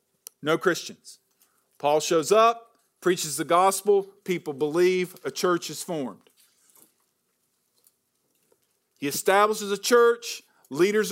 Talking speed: 105 wpm